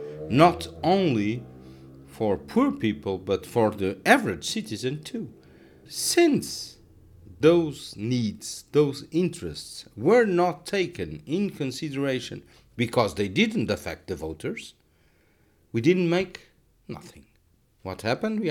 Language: English